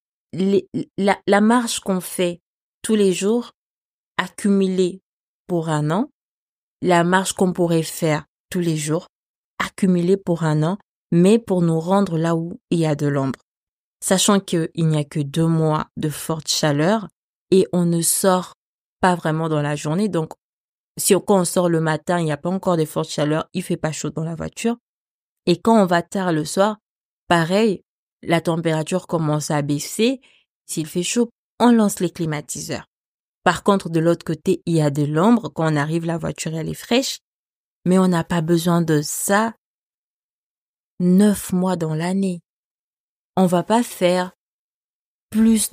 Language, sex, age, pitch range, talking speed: French, female, 20-39, 160-195 Hz, 175 wpm